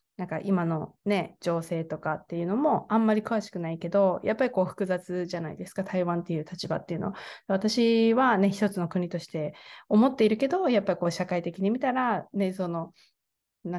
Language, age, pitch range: Japanese, 20-39, 175-210 Hz